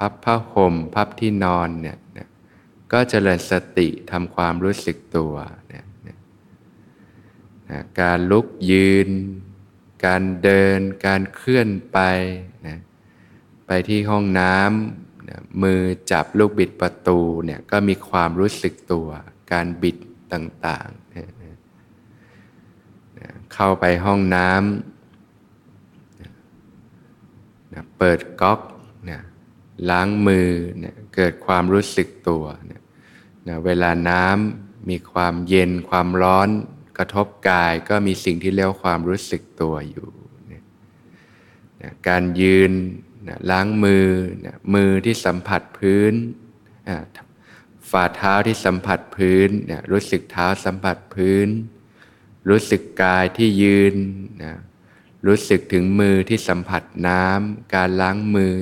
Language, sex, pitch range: Thai, male, 90-100 Hz